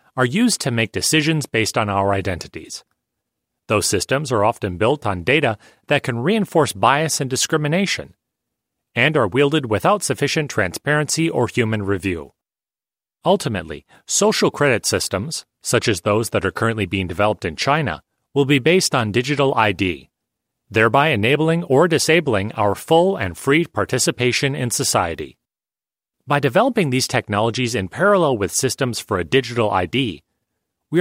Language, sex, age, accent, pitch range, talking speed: English, male, 30-49, American, 110-150 Hz, 145 wpm